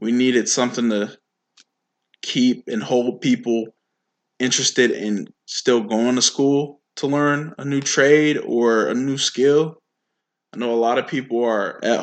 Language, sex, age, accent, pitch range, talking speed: English, male, 20-39, American, 120-145 Hz, 155 wpm